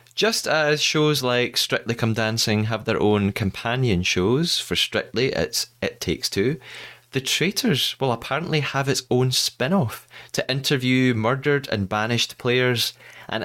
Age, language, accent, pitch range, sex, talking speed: 20-39, English, British, 105-145 Hz, male, 145 wpm